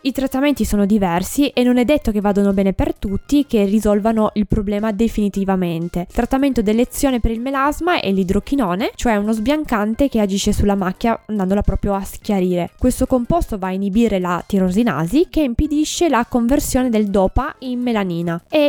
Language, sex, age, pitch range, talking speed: Italian, female, 20-39, 195-260 Hz, 170 wpm